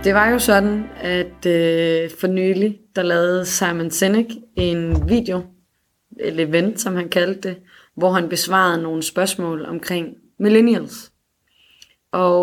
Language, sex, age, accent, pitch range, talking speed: Danish, female, 20-39, native, 165-205 Hz, 135 wpm